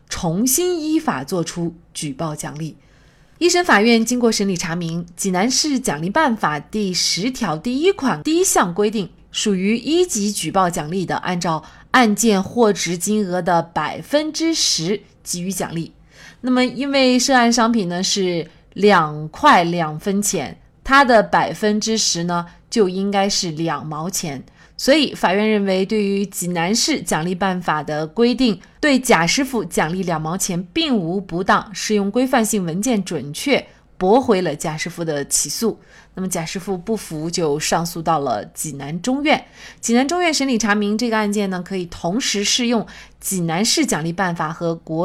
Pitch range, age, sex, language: 175-245 Hz, 30-49, female, Chinese